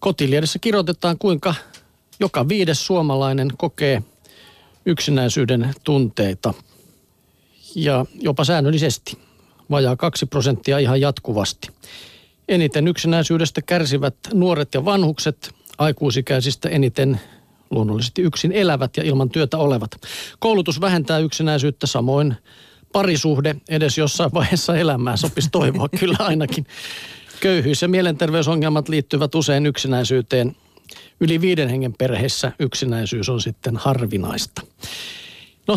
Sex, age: male, 50-69